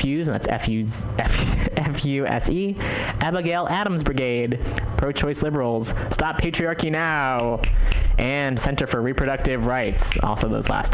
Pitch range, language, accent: 110-140 Hz, English, American